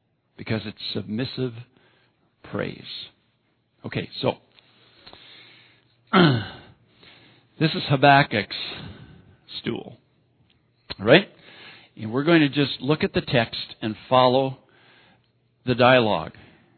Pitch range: 115-155 Hz